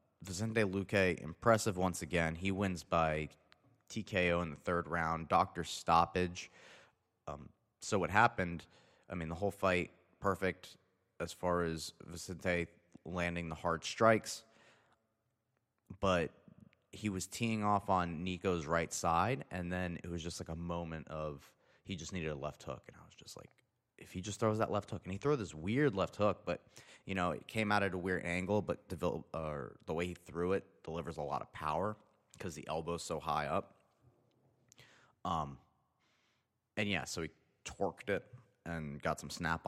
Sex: male